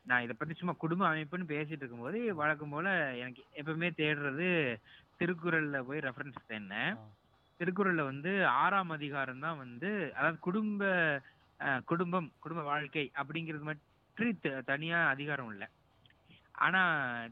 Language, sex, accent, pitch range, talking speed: Tamil, male, native, 130-175 Hz, 120 wpm